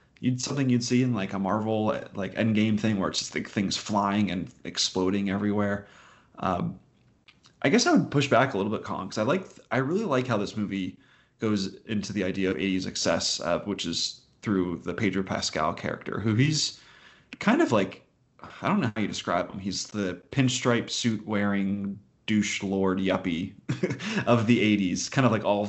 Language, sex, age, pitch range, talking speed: English, male, 30-49, 95-110 Hz, 195 wpm